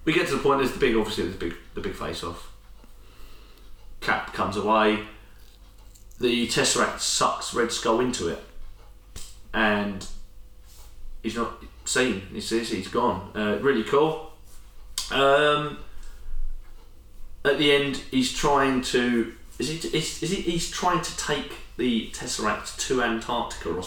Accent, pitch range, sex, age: British, 95-115 Hz, male, 30-49